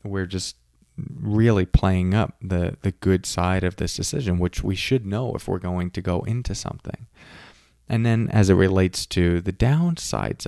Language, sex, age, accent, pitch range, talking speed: English, male, 20-39, American, 90-120 Hz, 175 wpm